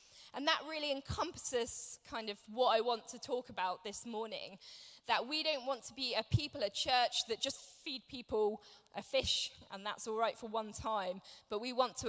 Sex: female